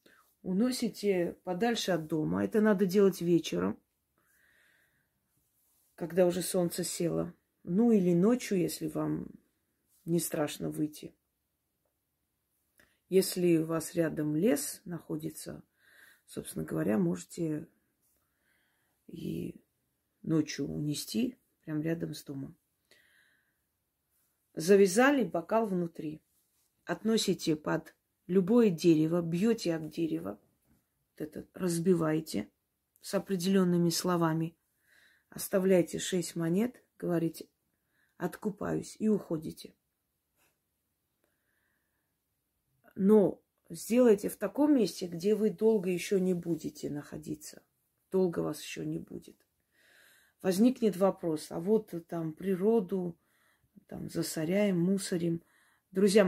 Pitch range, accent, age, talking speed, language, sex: 160-200 Hz, native, 30-49, 90 wpm, Russian, female